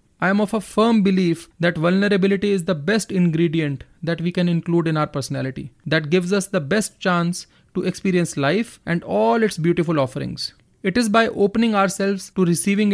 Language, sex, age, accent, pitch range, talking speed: English, male, 30-49, Indian, 160-195 Hz, 185 wpm